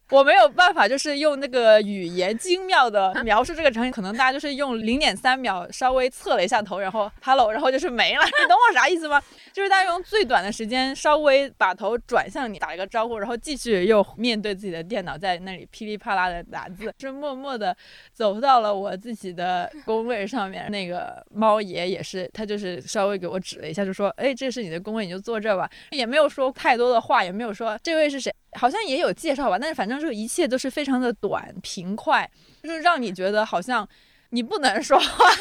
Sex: female